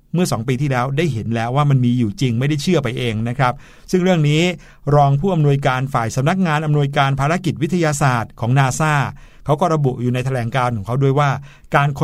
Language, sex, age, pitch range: Thai, male, 60-79, 130-170 Hz